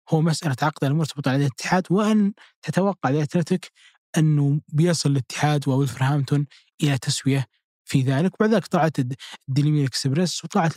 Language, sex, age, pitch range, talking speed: Arabic, male, 20-39, 140-170 Hz, 125 wpm